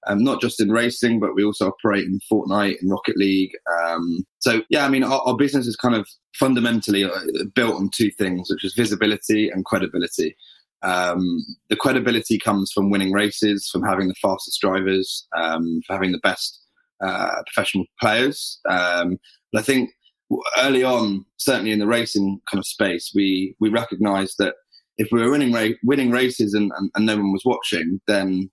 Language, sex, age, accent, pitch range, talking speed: English, male, 20-39, British, 95-115 Hz, 185 wpm